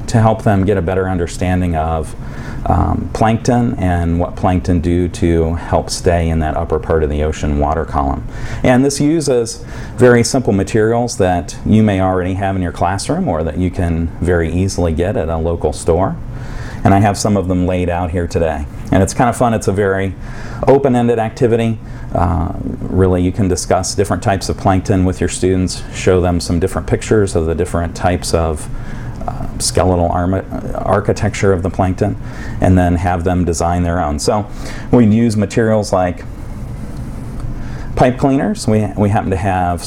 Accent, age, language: American, 40-59, English